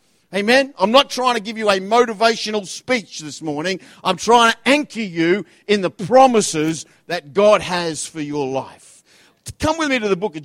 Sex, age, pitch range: male, 50-69, 150-210 Hz